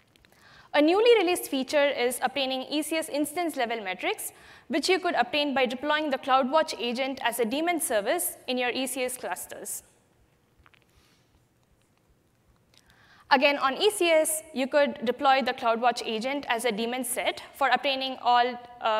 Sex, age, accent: female, 20-39, Indian